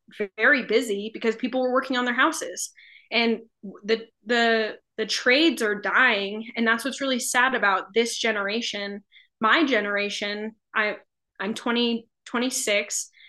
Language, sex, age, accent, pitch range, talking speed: English, female, 20-39, American, 210-245 Hz, 135 wpm